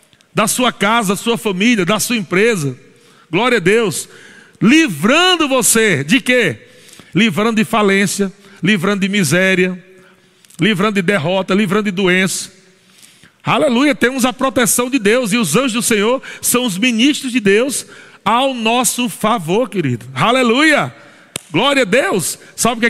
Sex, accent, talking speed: male, Brazilian, 140 wpm